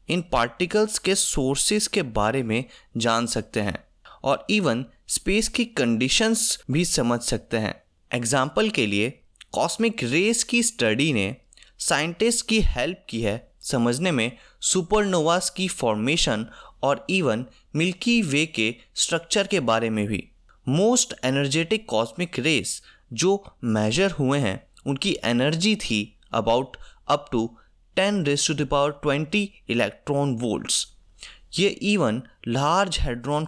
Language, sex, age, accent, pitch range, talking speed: Hindi, male, 20-39, native, 115-195 Hz, 130 wpm